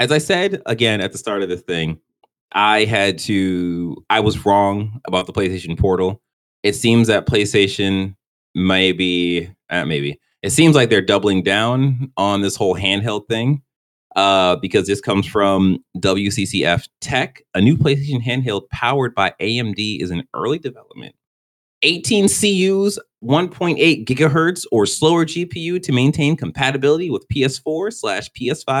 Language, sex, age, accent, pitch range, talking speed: English, male, 30-49, American, 90-130 Hz, 150 wpm